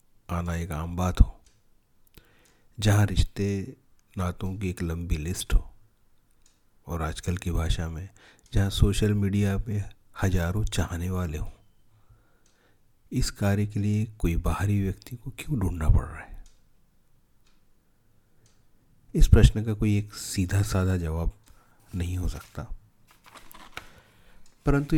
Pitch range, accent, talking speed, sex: 85-105 Hz, native, 125 wpm, male